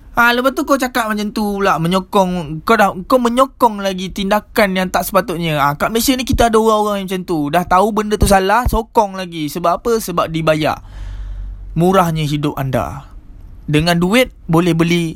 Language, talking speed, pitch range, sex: Malay, 185 wpm, 150-215 Hz, male